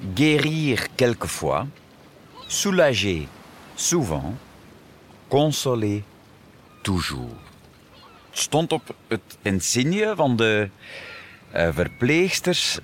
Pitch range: 90-130 Hz